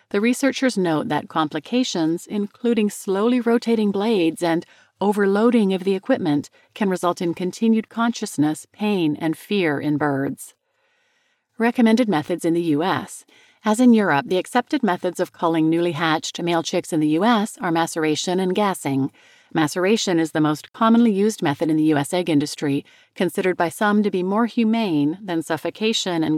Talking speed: 160 wpm